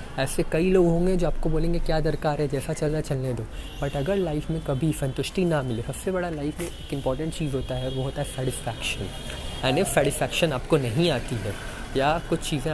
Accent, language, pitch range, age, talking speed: native, Hindi, 120-165 Hz, 20-39, 215 wpm